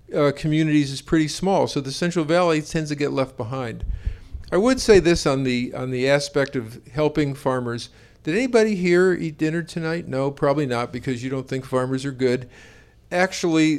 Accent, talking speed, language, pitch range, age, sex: American, 185 wpm, English, 130-160 Hz, 50-69, male